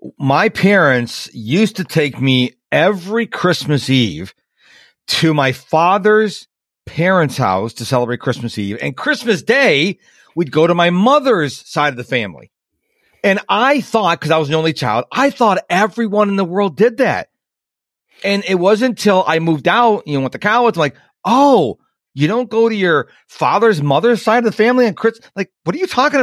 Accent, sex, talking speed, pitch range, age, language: American, male, 180 wpm, 150-225 Hz, 40-59, English